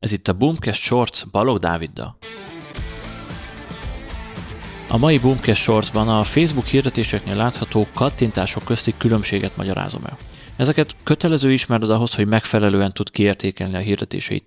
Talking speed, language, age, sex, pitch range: 125 wpm, Hungarian, 30-49, male, 100-125 Hz